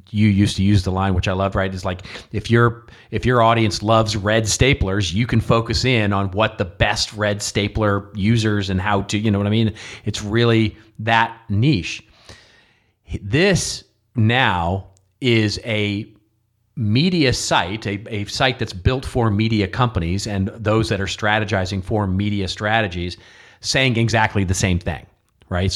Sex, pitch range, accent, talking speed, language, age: male, 100-120 Hz, American, 165 wpm, English, 40-59